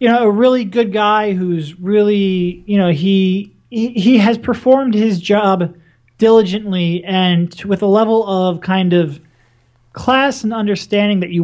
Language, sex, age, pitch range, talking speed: English, male, 30-49, 165-210 Hz, 155 wpm